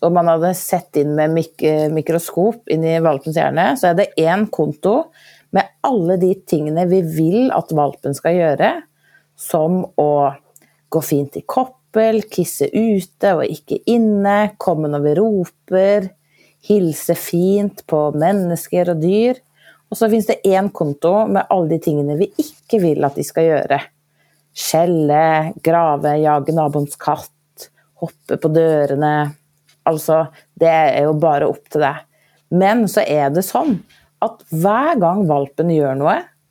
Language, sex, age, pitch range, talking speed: Swedish, female, 30-49, 150-200 Hz, 155 wpm